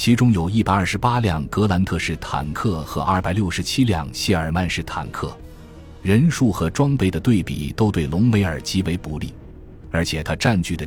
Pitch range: 80-100 Hz